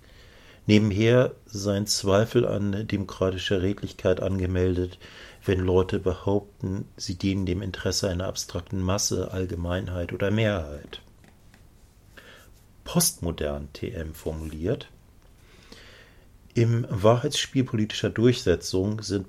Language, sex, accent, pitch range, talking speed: German, male, German, 90-110 Hz, 85 wpm